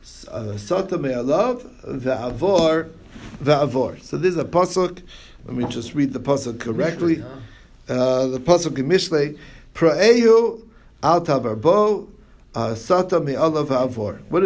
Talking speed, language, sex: 95 wpm, English, male